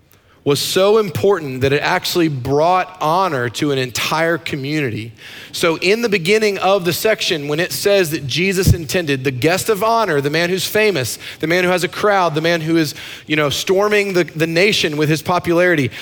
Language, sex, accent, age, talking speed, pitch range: English, male, American, 30-49, 195 wpm, 125-175 Hz